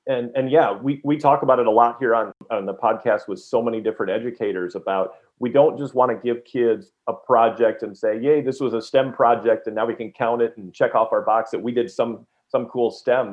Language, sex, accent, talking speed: English, male, American, 250 wpm